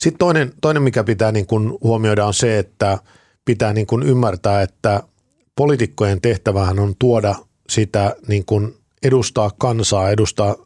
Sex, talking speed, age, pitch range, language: male, 145 wpm, 50-69, 100-115 Hz, Finnish